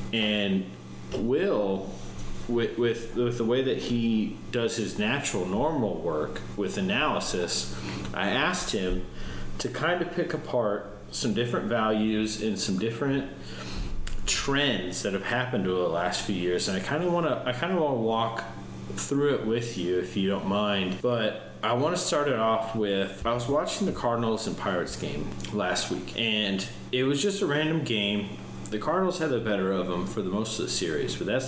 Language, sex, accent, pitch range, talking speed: English, male, American, 90-130 Hz, 190 wpm